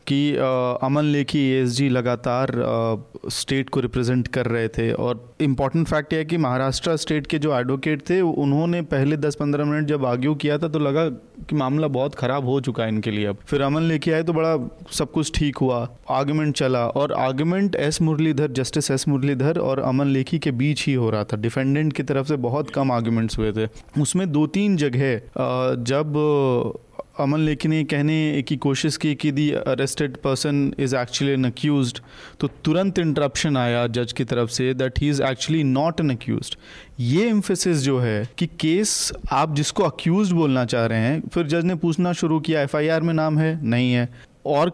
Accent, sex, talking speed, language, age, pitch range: native, male, 190 wpm, Hindi, 30-49, 130-160 Hz